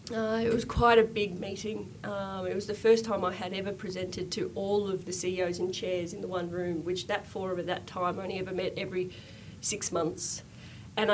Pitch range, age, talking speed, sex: 175-205 Hz, 30-49, 220 wpm, female